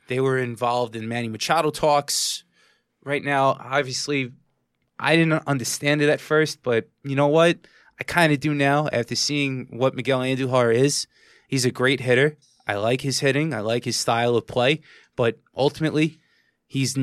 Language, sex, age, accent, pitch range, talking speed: English, male, 20-39, American, 120-140 Hz, 170 wpm